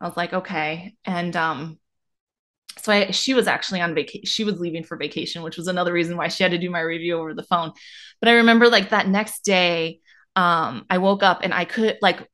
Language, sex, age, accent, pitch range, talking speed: English, female, 20-39, American, 175-215 Hz, 225 wpm